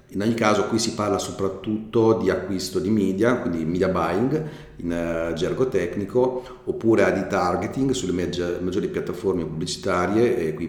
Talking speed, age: 145 wpm, 40-59